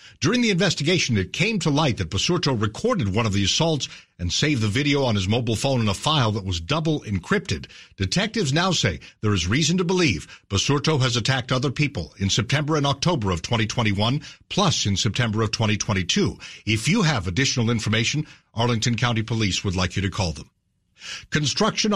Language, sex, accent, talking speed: English, male, American, 185 wpm